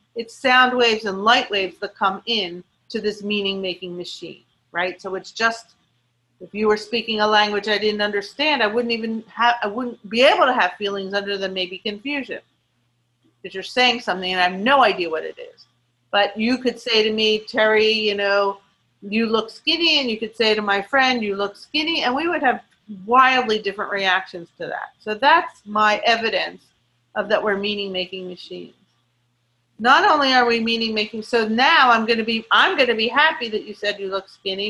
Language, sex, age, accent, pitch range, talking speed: English, female, 40-59, American, 195-245 Hz, 200 wpm